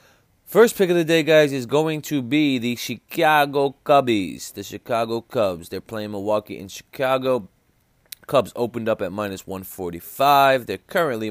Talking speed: 155 wpm